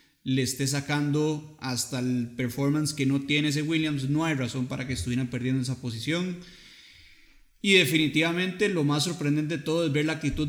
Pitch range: 135-155 Hz